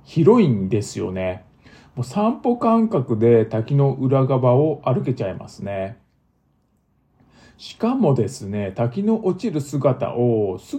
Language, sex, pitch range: Japanese, male, 115-180 Hz